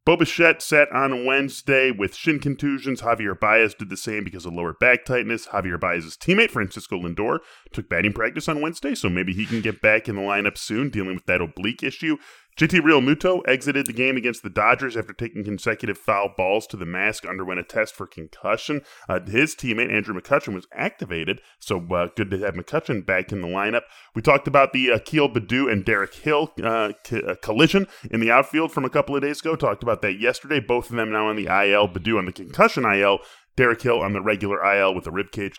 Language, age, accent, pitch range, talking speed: English, 10-29, American, 100-140 Hz, 215 wpm